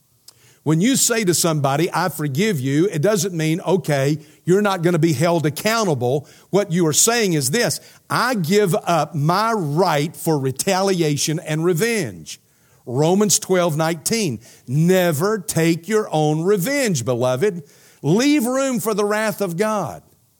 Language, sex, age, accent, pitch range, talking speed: English, male, 50-69, American, 130-185 Hz, 145 wpm